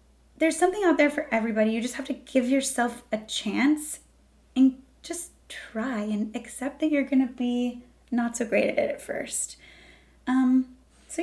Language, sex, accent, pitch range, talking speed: English, female, American, 230-290 Hz, 175 wpm